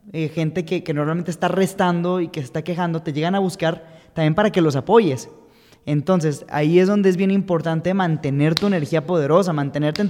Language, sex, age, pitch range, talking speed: Spanish, male, 20-39, 150-185 Hz, 195 wpm